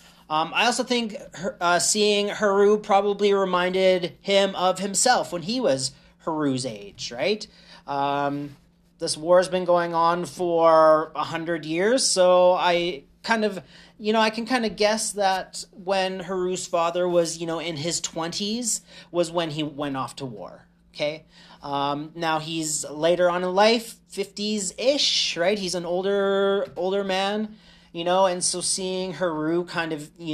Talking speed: 160 wpm